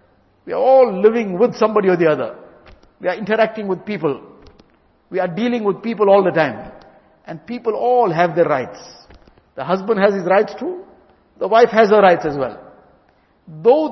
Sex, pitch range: male, 185-240 Hz